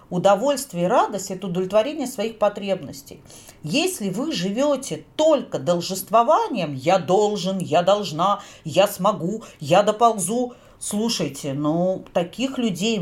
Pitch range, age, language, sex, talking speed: 175-255 Hz, 40-59, Russian, female, 110 wpm